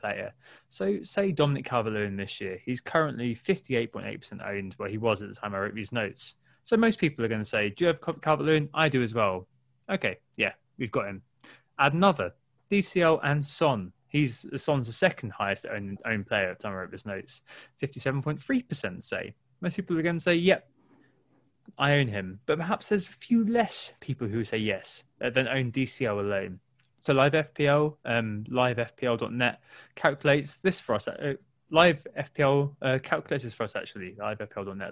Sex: male